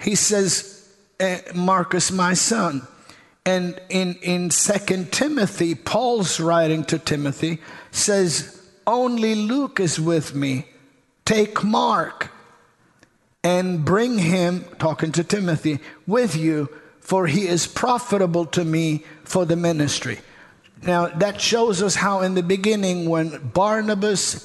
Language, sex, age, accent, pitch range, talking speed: English, male, 50-69, American, 160-195 Hz, 125 wpm